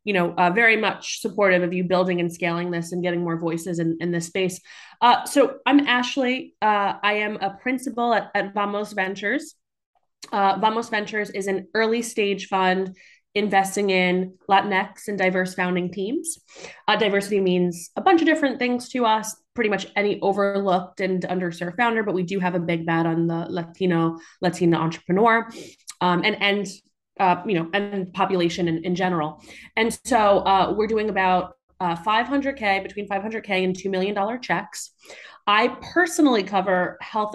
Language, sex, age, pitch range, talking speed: English, female, 20-39, 185-225 Hz, 170 wpm